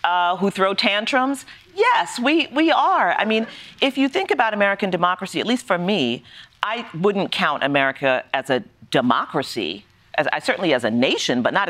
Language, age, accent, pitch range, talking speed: English, 40-59, American, 135-205 Hz, 175 wpm